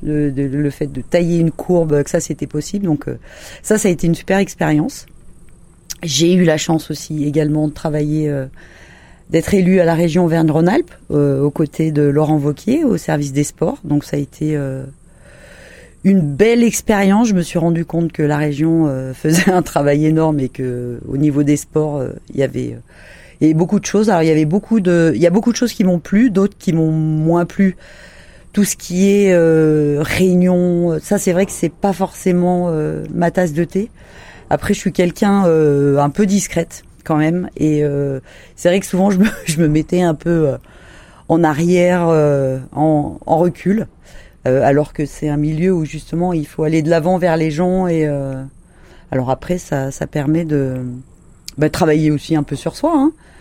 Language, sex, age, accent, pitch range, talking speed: French, female, 30-49, French, 150-180 Hz, 205 wpm